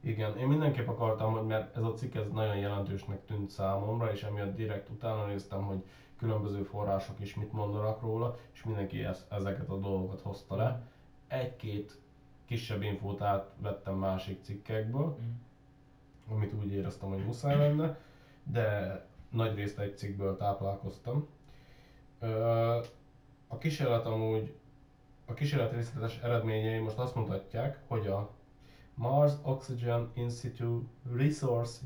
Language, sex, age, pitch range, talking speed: Hungarian, male, 20-39, 100-130 Hz, 125 wpm